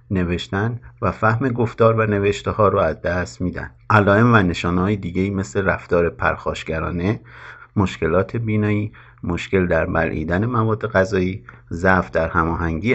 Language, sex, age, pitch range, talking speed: Persian, male, 50-69, 85-105 Hz, 135 wpm